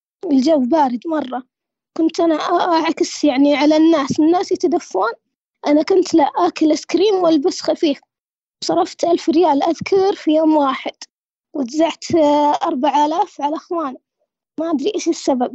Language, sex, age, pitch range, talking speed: Arabic, female, 20-39, 290-345 Hz, 135 wpm